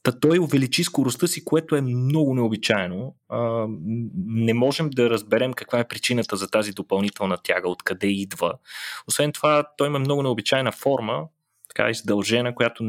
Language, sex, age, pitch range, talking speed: Bulgarian, male, 20-39, 105-135 Hz, 150 wpm